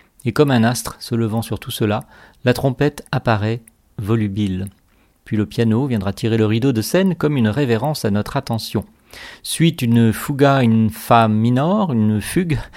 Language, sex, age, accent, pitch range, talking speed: French, male, 40-59, French, 110-140 Hz, 170 wpm